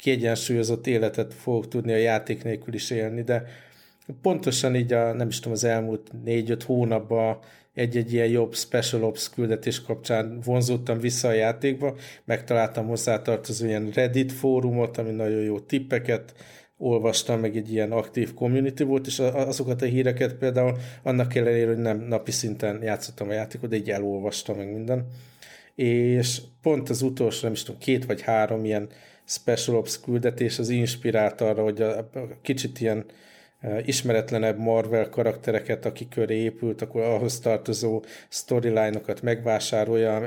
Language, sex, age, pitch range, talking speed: Hungarian, male, 50-69, 110-125 Hz, 150 wpm